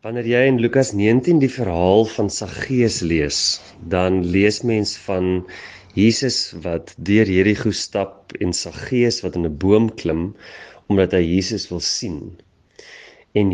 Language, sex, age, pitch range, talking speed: English, male, 30-49, 90-115 Hz, 135 wpm